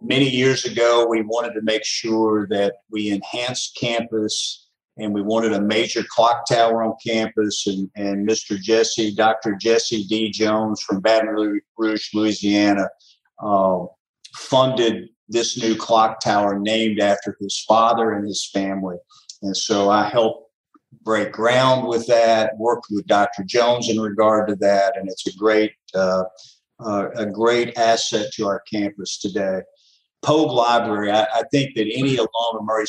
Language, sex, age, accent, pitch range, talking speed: English, male, 50-69, American, 100-115 Hz, 150 wpm